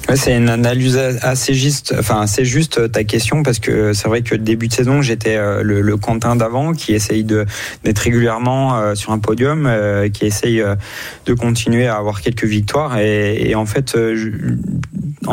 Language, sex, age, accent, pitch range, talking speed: French, male, 20-39, French, 105-125 Hz, 175 wpm